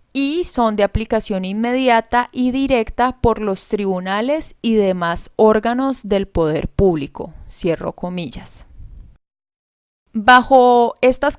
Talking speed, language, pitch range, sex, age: 105 wpm, Spanish, 190-245 Hz, female, 30-49